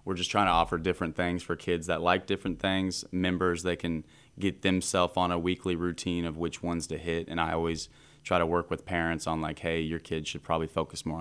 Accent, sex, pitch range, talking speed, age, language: American, male, 80-90 Hz, 235 wpm, 20-39, English